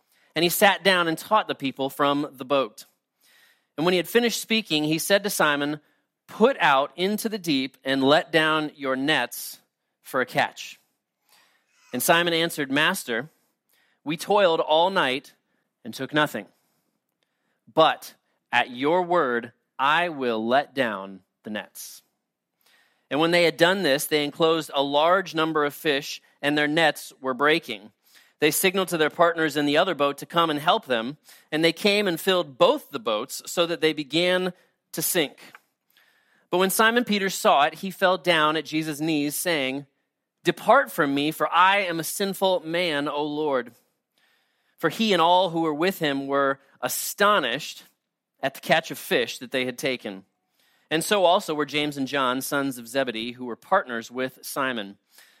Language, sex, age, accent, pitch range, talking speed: English, male, 30-49, American, 140-175 Hz, 170 wpm